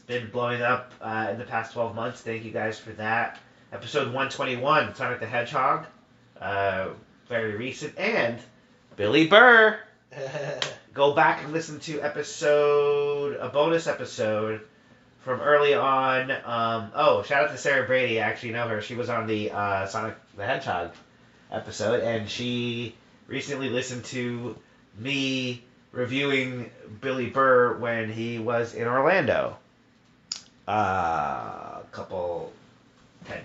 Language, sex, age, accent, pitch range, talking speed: English, male, 30-49, American, 110-135 Hz, 135 wpm